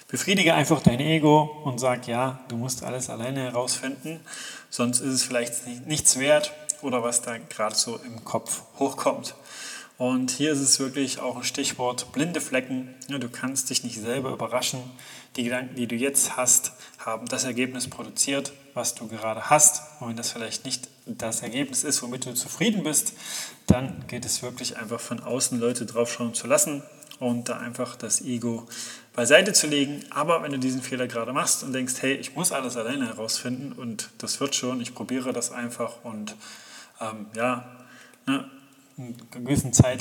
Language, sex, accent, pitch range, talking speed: German, male, German, 120-140 Hz, 175 wpm